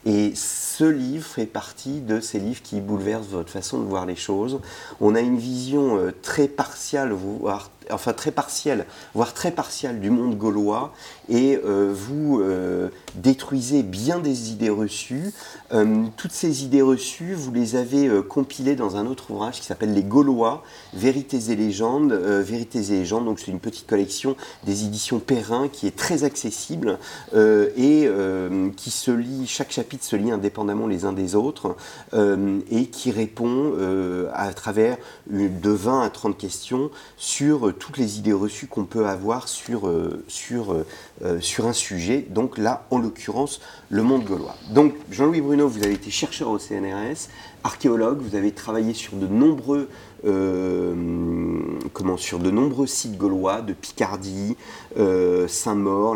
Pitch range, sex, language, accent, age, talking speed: 100-135 Hz, male, French, French, 40-59, 165 wpm